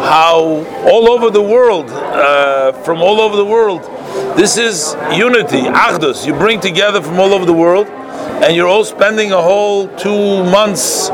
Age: 50-69